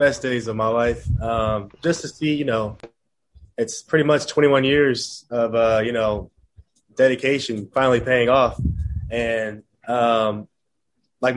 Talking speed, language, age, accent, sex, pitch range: 145 wpm, English, 20-39, American, male, 110-140 Hz